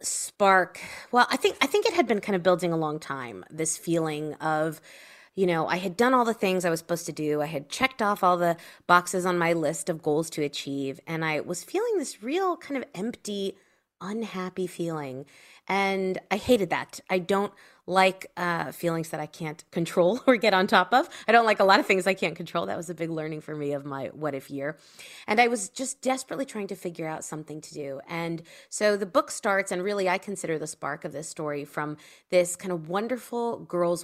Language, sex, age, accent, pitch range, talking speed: English, female, 20-39, American, 155-205 Hz, 225 wpm